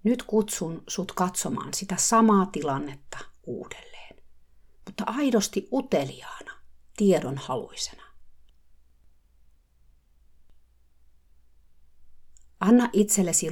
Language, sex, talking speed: Finnish, female, 60 wpm